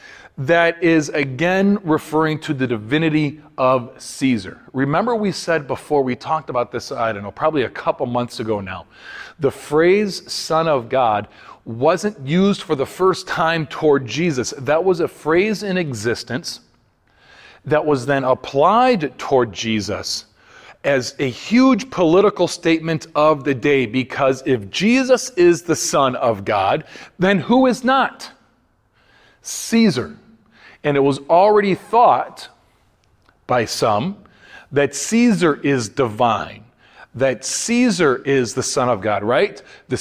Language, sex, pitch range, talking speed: English, male, 130-175 Hz, 140 wpm